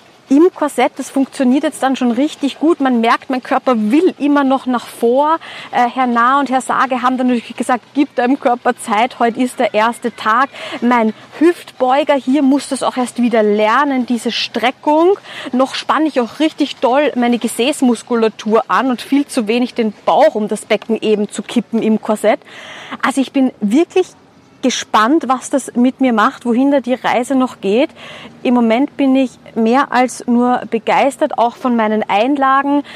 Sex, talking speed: female, 180 wpm